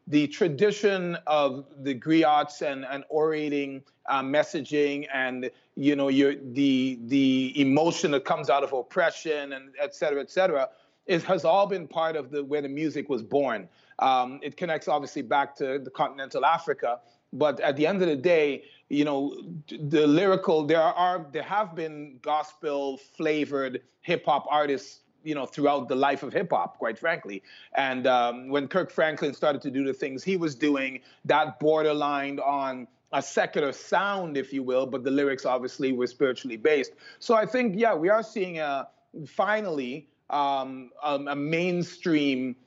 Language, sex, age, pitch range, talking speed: English, male, 30-49, 135-160 Hz, 165 wpm